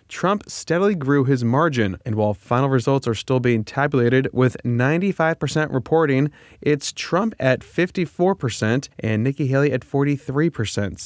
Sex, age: male, 20-39